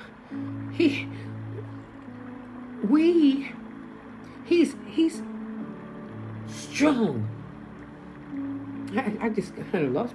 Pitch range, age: 175-255 Hz, 60-79